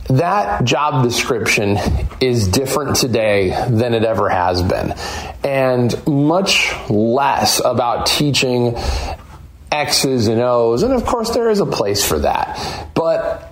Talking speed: 130 wpm